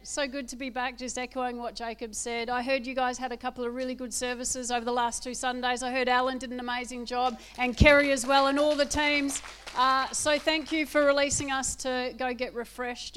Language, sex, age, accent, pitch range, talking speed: English, female, 40-59, Australian, 220-265 Hz, 235 wpm